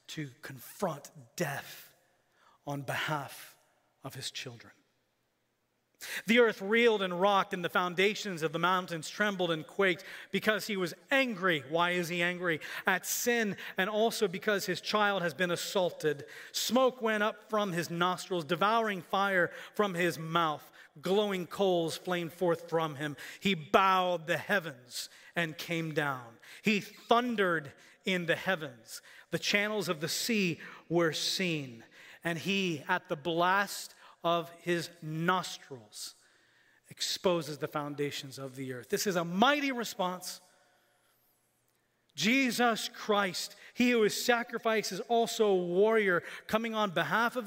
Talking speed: 140 wpm